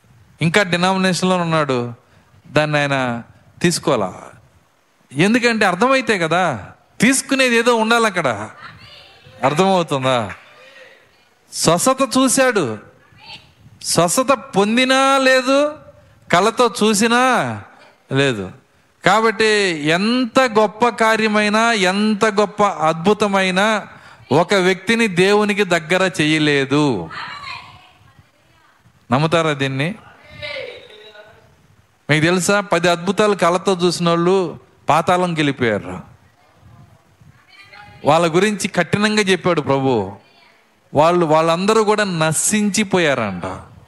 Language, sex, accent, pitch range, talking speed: Telugu, male, native, 150-225 Hz, 70 wpm